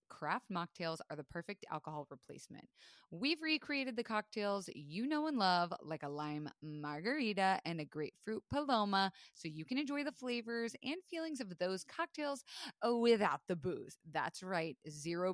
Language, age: English, 20-39